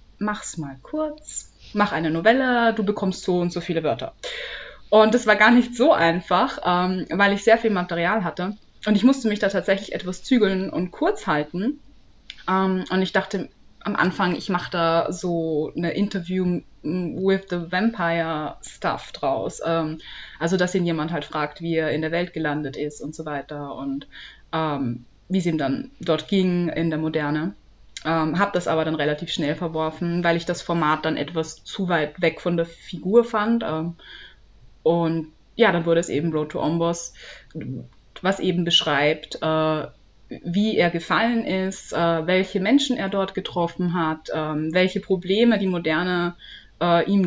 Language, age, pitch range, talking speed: German, 20-39, 155-190 Hz, 160 wpm